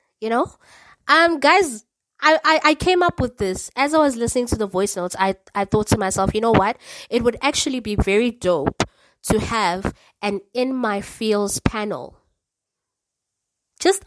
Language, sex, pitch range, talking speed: English, female, 190-255 Hz, 175 wpm